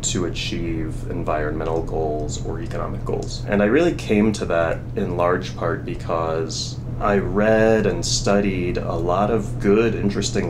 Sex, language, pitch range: male, English, 100-120 Hz